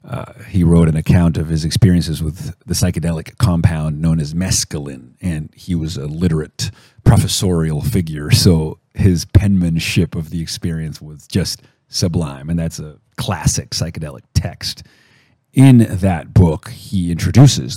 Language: English